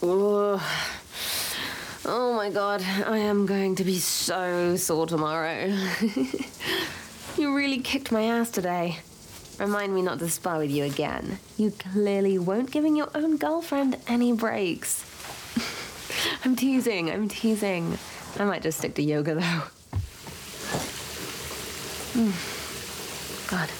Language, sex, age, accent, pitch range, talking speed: English, female, 30-49, British, 180-250 Hz, 120 wpm